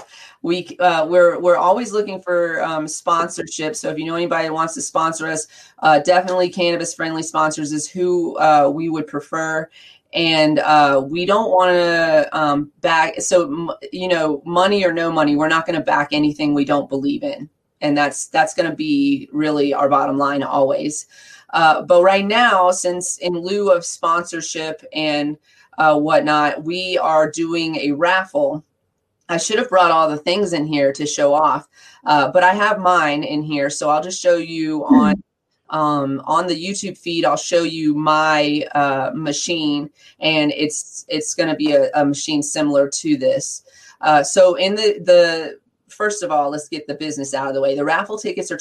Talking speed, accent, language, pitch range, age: 185 wpm, American, English, 150-180 Hz, 30-49